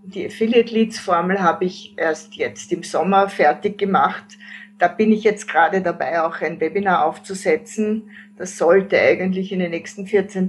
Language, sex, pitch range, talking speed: German, female, 190-225 Hz, 165 wpm